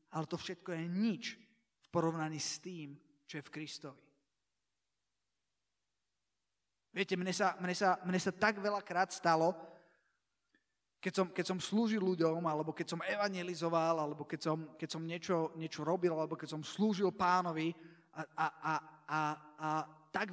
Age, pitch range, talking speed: 20-39, 165-205 Hz, 155 wpm